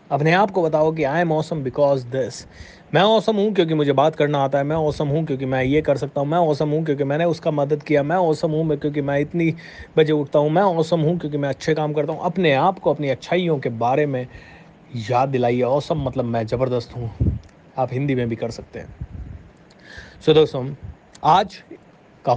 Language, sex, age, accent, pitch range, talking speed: Hindi, male, 30-49, native, 120-155 Hz, 100 wpm